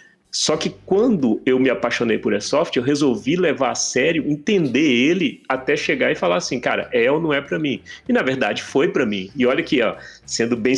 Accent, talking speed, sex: Brazilian, 215 wpm, male